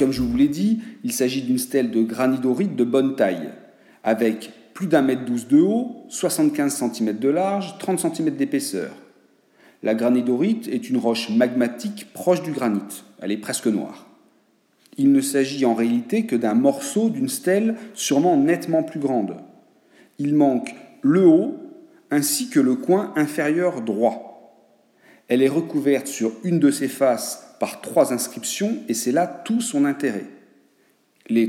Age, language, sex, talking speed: 40-59, French, male, 160 wpm